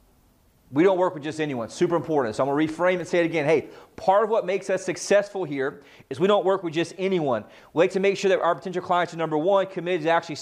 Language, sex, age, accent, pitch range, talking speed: English, male, 30-49, American, 155-185 Hz, 270 wpm